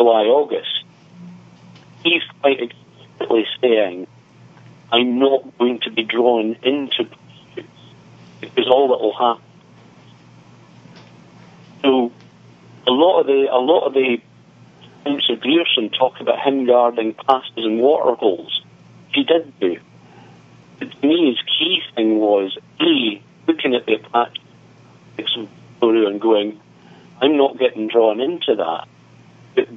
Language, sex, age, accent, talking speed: English, male, 50-69, British, 125 wpm